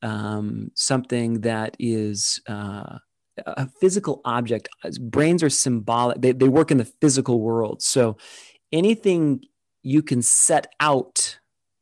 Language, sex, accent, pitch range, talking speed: English, male, American, 120-150 Hz, 120 wpm